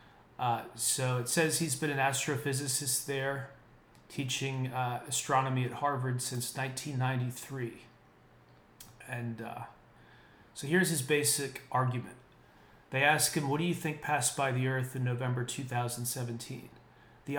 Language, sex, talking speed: English, male, 130 wpm